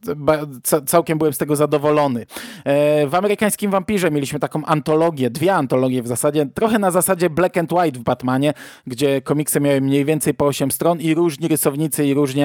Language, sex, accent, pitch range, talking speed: Polish, male, native, 140-175 Hz, 175 wpm